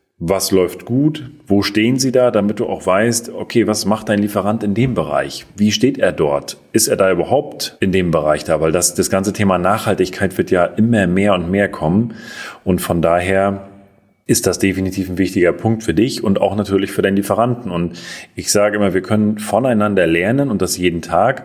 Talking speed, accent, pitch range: 205 wpm, German, 95-110 Hz